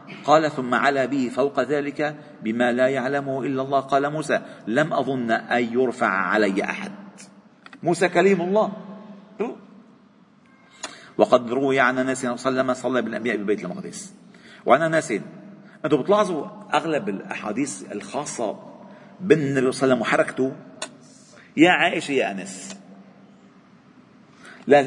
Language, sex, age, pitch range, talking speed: Arabic, male, 50-69, 140-205 Hz, 120 wpm